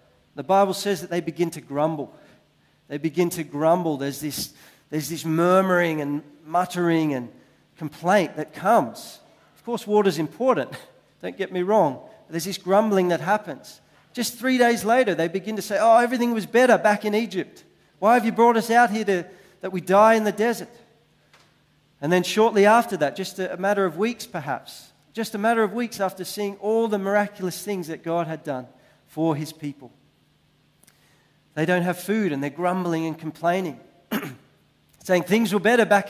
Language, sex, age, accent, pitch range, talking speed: English, male, 40-59, Australian, 150-205 Hz, 175 wpm